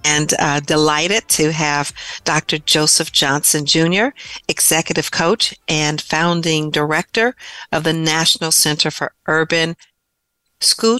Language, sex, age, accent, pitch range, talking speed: English, female, 50-69, American, 150-175 Hz, 115 wpm